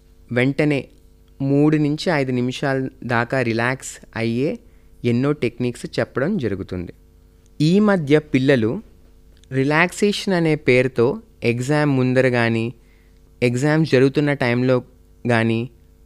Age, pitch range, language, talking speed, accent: 20-39, 110-150 Hz, Telugu, 95 wpm, native